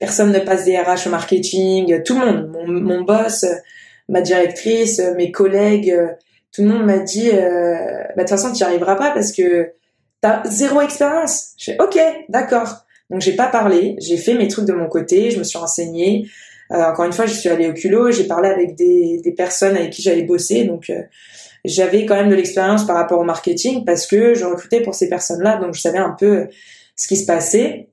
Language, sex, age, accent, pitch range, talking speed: French, female, 20-39, French, 175-210 Hz, 220 wpm